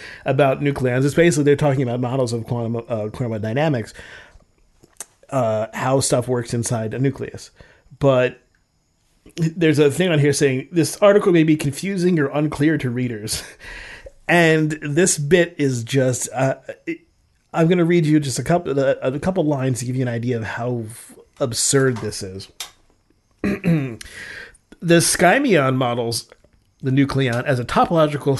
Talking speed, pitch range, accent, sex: 155 wpm, 125-155 Hz, American, male